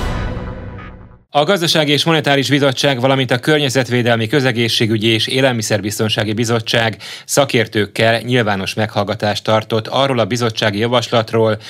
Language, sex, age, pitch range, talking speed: Hungarian, male, 30-49, 105-130 Hz, 105 wpm